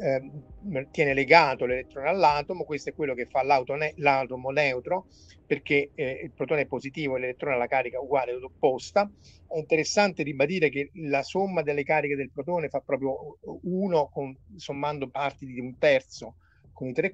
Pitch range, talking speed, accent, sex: 130-170 Hz, 160 wpm, native, male